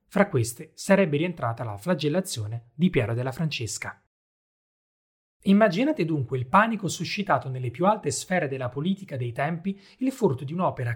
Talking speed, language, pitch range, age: 150 wpm, Italian, 130-185 Hz, 30-49